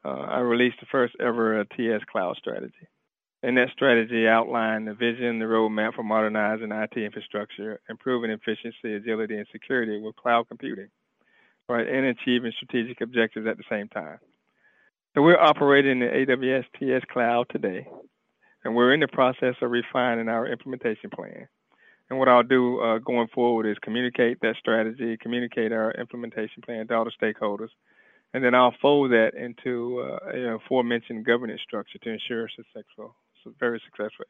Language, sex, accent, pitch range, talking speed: English, male, American, 110-125 Hz, 155 wpm